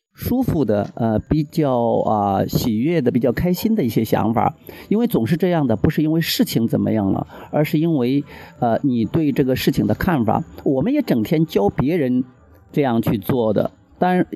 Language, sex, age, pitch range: Chinese, male, 50-69, 130-190 Hz